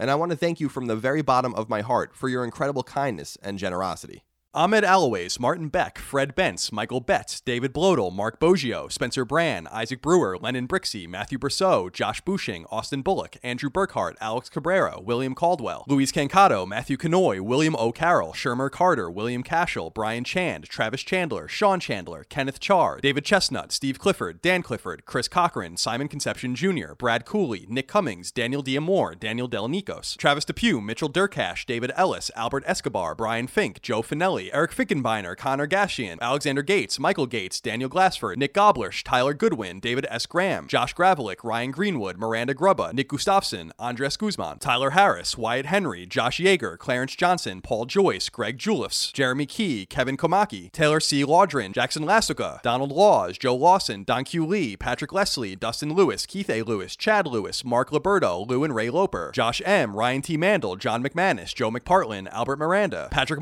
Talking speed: 170 wpm